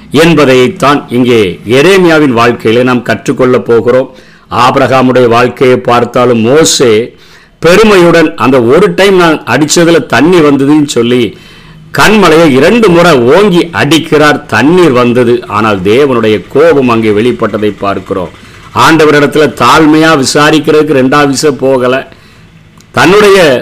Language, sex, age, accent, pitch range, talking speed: Tamil, male, 50-69, native, 115-155 Hz, 100 wpm